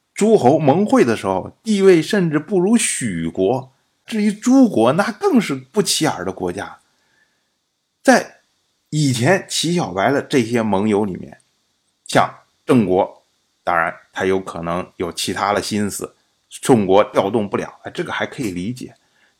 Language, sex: Chinese, male